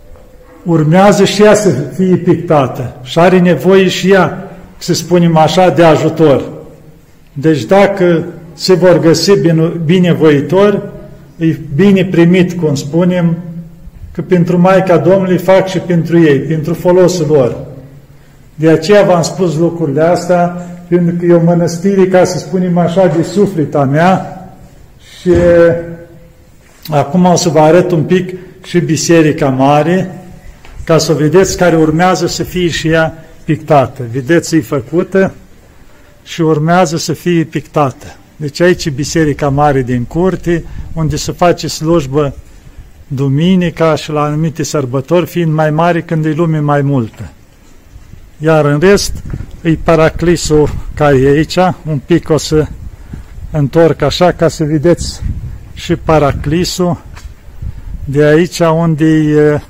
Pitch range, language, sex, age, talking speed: 150-175 Hz, Romanian, male, 50-69, 135 wpm